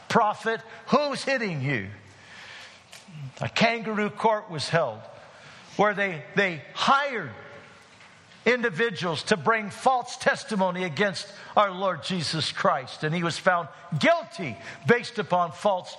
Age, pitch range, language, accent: 50-69, 170-240 Hz, English, American